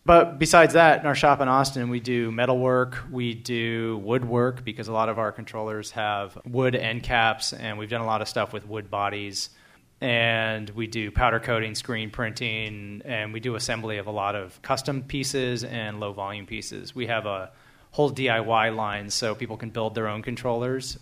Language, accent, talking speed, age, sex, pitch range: English, American, 190 wpm, 30-49, male, 105-125 Hz